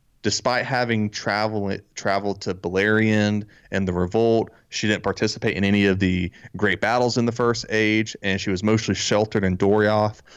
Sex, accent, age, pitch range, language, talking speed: male, American, 30-49, 100-120 Hz, English, 170 wpm